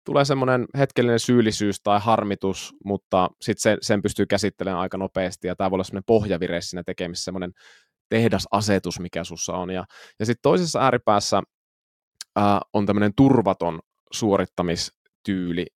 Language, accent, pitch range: Finnish, native, 90-105 Hz